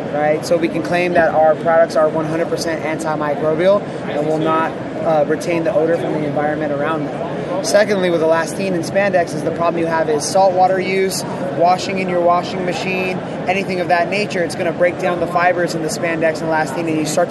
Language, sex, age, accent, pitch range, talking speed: English, male, 20-39, American, 160-180 Hz, 210 wpm